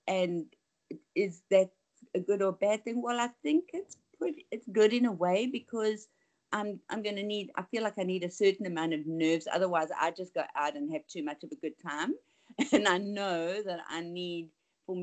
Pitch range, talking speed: 180-240 Hz, 215 wpm